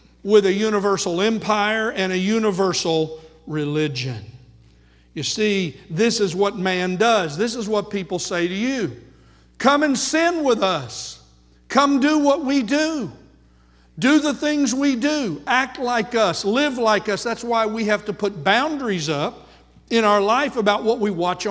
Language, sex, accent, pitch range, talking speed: English, male, American, 180-235 Hz, 160 wpm